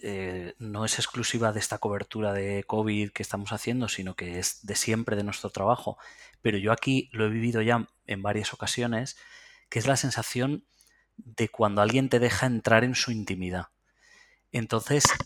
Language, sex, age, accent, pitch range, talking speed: Spanish, male, 20-39, Spanish, 110-135 Hz, 175 wpm